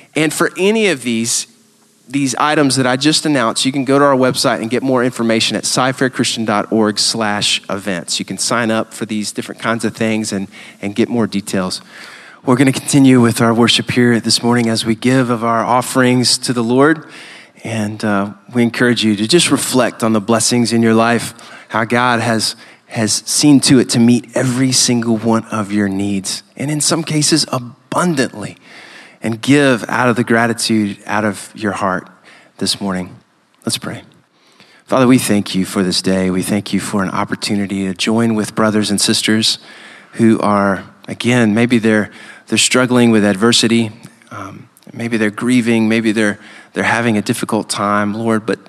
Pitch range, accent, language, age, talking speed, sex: 110-125 Hz, American, English, 20-39, 180 wpm, male